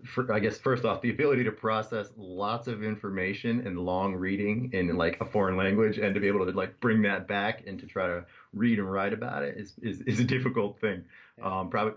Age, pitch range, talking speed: 30-49, 90-110 Hz, 230 wpm